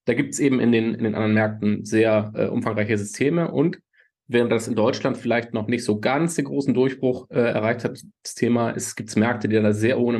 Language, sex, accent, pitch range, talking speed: German, male, German, 110-125 Hz, 230 wpm